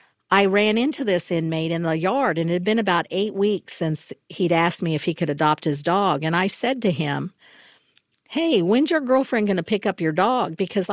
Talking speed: 225 wpm